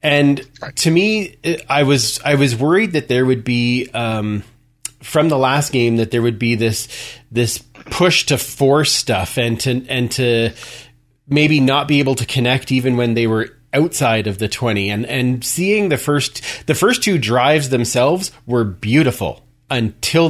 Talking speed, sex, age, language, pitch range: 170 wpm, male, 30-49, English, 115-140 Hz